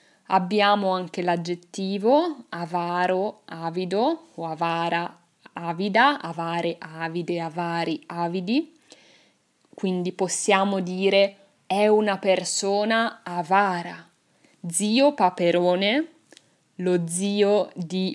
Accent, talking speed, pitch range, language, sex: native, 80 wpm, 175-220 Hz, Italian, female